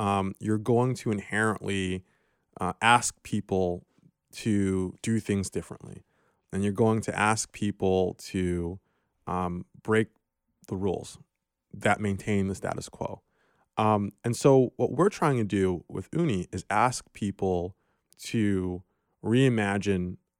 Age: 20-39